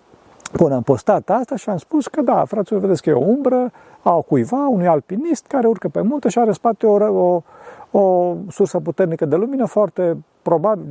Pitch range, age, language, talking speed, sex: 145-210 Hz, 50-69, Romanian, 200 wpm, male